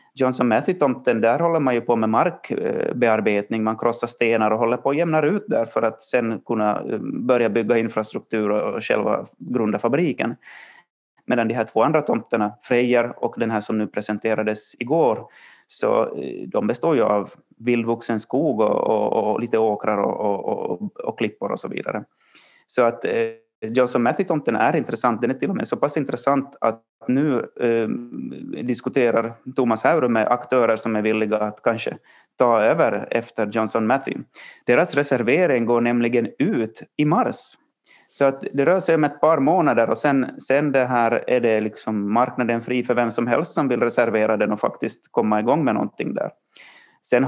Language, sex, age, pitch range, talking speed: Swedish, male, 30-49, 110-125 Hz, 175 wpm